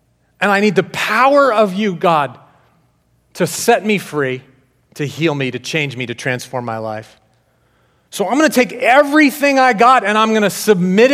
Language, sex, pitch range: English, male, 125-175 Hz